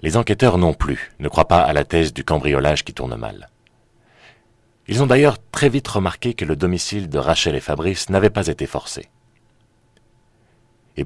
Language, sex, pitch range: French, male, 75-110 Hz